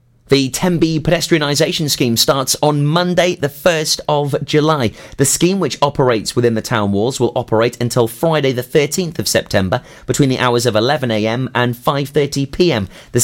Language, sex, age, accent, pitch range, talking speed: English, male, 30-49, British, 115-160 Hz, 160 wpm